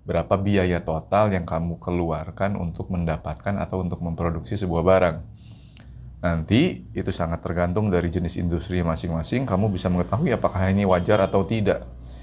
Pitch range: 90-110 Hz